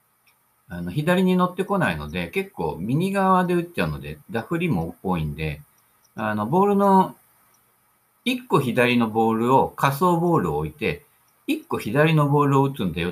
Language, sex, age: Japanese, male, 50-69